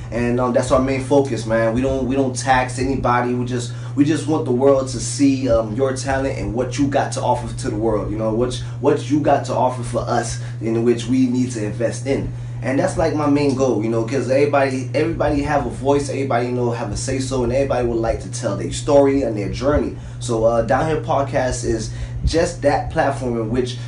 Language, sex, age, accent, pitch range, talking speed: English, male, 20-39, American, 120-140 Hz, 235 wpm